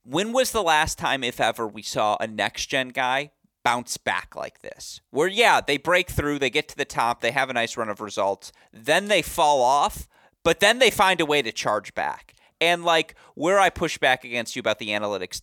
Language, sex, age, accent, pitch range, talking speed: English, male, 30-49, American, 115-155 Hz, 220 wpm